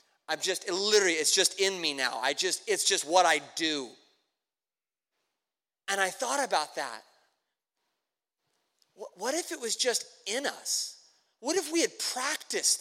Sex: male